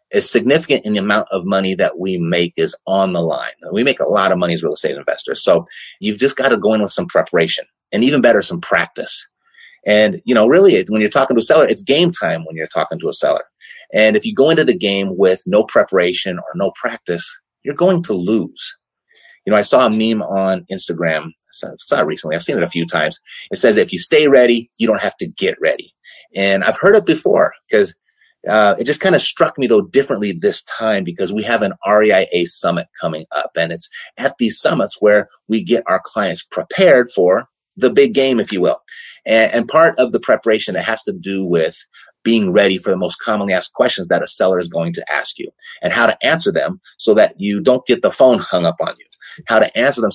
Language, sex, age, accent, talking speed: English, male, 30-49, American, 230 wpm